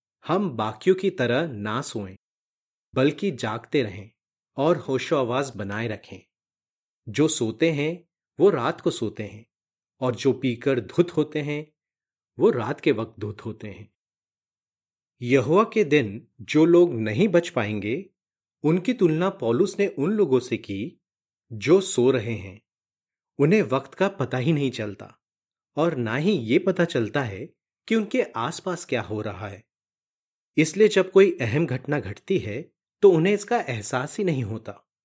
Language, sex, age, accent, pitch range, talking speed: Hindi, male, 30-49, native, 110-165 Hz, 155 wpm